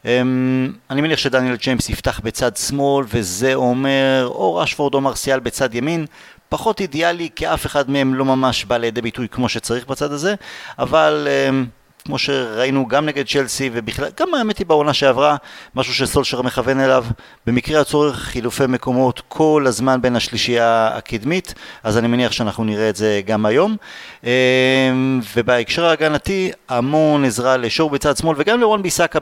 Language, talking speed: Hebrew, 155 wpm